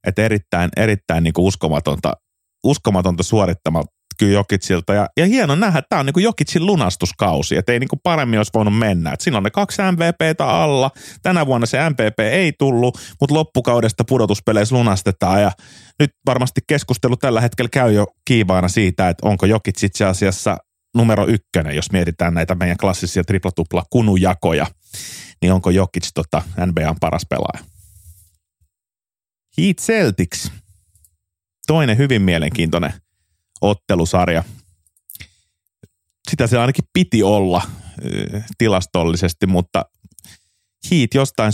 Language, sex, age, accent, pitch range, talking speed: Finnish, male, 30-49, native, 90-120 Hz, 125 wpm